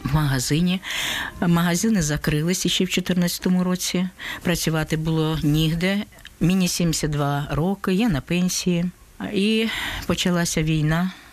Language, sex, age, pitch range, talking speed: Ukrainian, female, 50-69, 145-175 Hz, 105 wpm